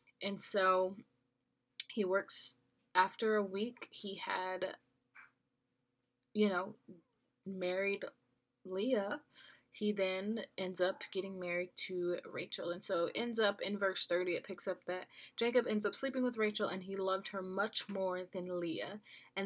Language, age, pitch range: English, 20-39, 180-205 Hz